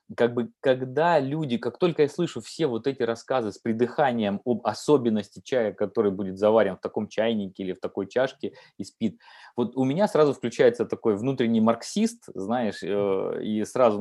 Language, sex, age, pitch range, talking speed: Russian, male, 20-39, 110-150 Hz, 170 wpm